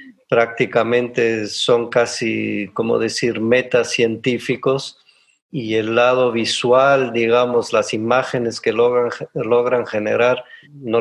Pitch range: 110-140 Hz